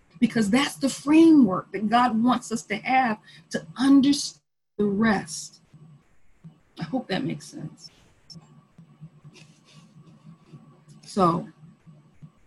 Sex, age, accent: female, 40-59, American